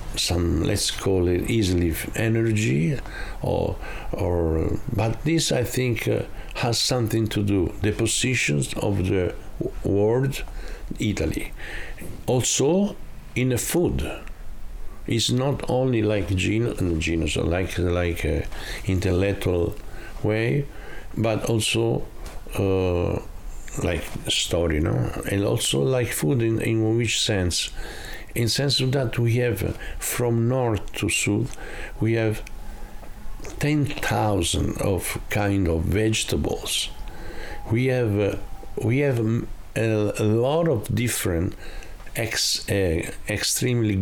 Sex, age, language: male, 60-79, English